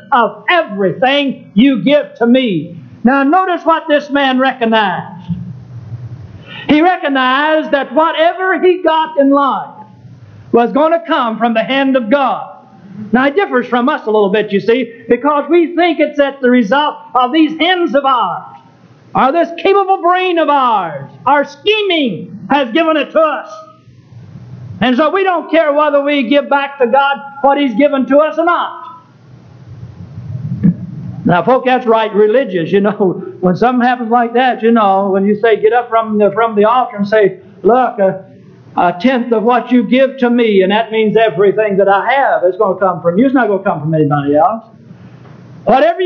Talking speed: 180 wpm